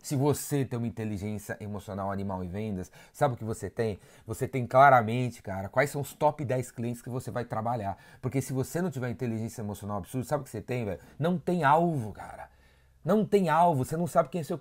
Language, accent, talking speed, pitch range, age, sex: Portuguese, Brazilian, 225 wpm, 110-135 Hz, 30-49, male